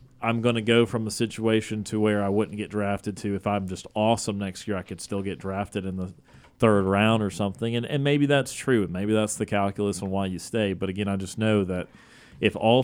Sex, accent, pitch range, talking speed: male, American, 100-115 Hz, 245 wpm